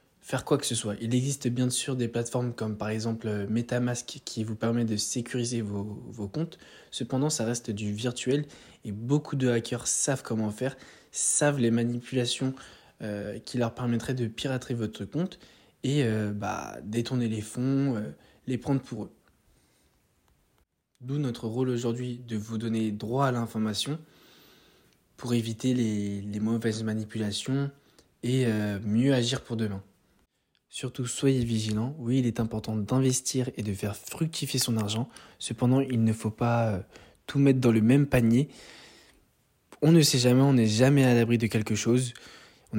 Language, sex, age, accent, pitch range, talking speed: French, male, 20-39, French, 110-130 Hz, 165 wpm